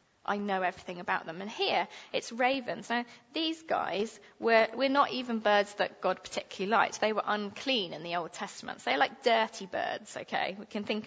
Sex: female